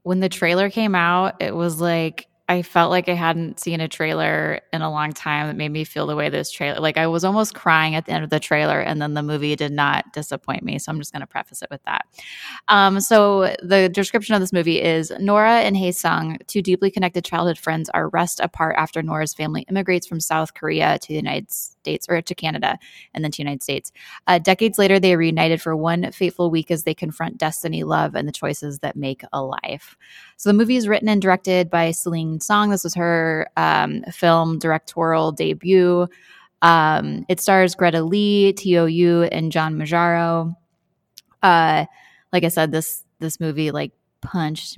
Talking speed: 205 wpm